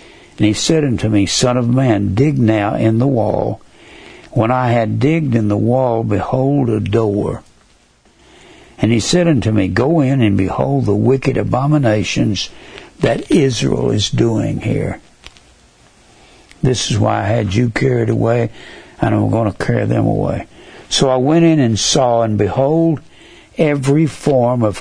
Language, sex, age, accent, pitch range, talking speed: English, male, 60-79, American, 110-160 Hz, 160 wpm